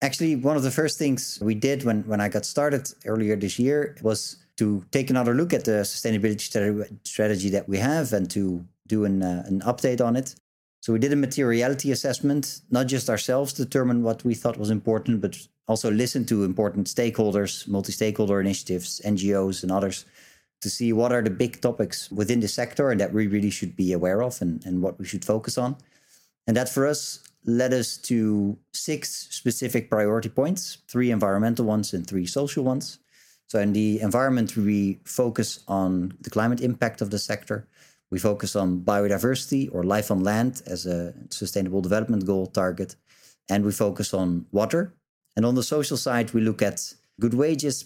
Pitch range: 100-125 Hz